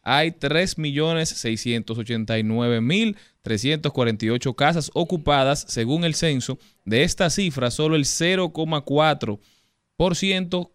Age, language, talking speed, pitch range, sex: 20-39, Spanish, 75 wpm, 125-150 Hz, male